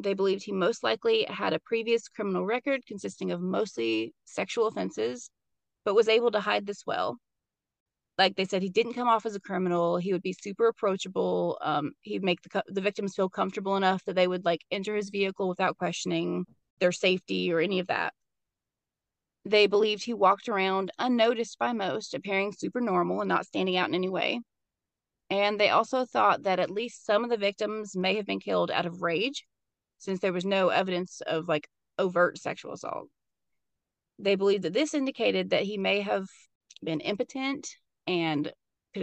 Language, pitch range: English, 180-220 Hz